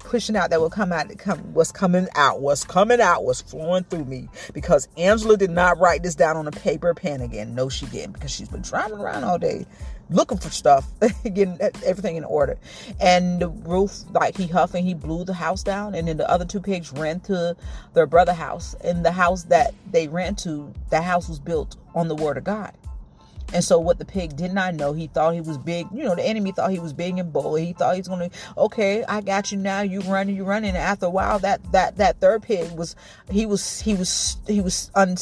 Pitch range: 170-200 Hz